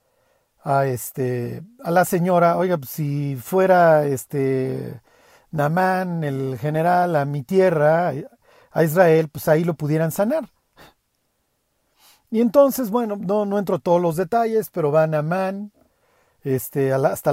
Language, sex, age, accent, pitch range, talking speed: Spanish, male, 50-69, Mexican, 160-220 Hz, 130 wpm